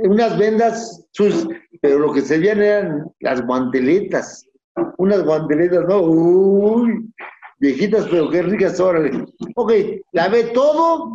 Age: 50-69